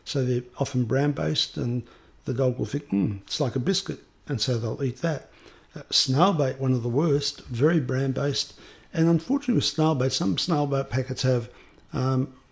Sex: male